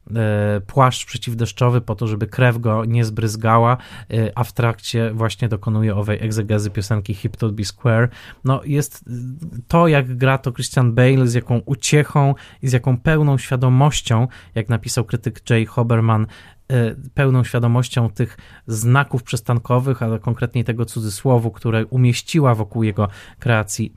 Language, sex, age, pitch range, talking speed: Polish, male, 20-39, 110-125 Hz, 140 wpm